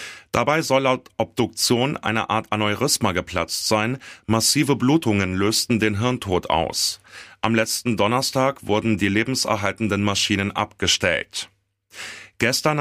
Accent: German